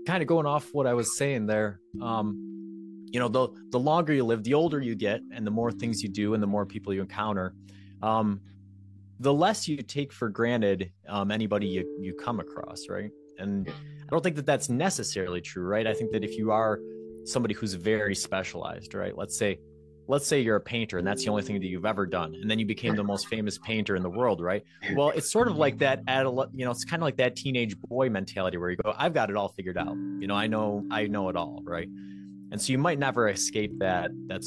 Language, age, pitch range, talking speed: English, 30-49, 95-125 Hz, 240 wpm